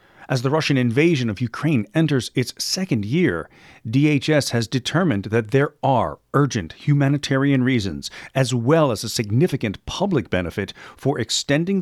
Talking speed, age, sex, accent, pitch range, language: 140 wpm, 50-69, male, American, 110-160 Hz, English